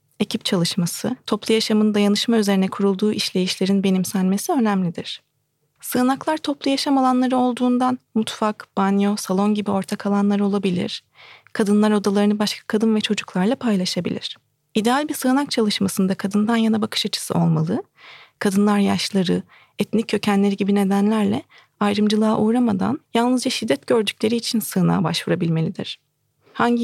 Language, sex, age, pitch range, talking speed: Turkish, female, 40-59, 200-235 Hz, 120 wpm